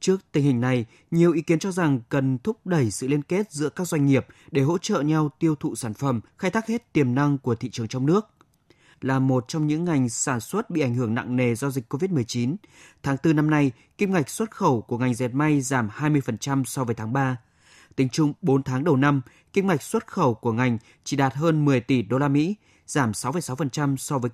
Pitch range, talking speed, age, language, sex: 125-160 Hz, 230 wpm, 20-39, Vietnamese, male